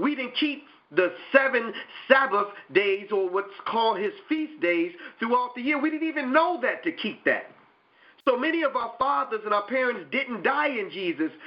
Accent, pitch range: American, 185-300 Hz